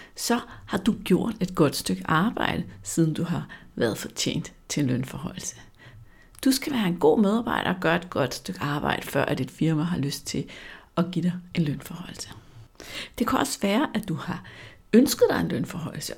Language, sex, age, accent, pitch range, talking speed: Danish, female, 60-79, native, 160-205 Hz, 185 wpm